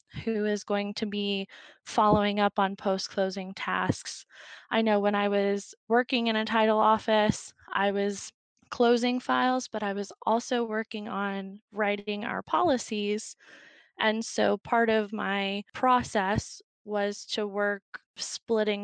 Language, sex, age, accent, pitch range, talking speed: English, female, 20-39, American, 200-220 Hz, 135 wpm